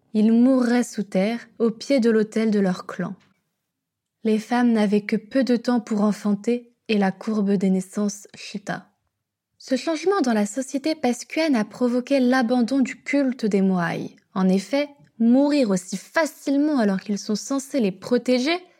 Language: French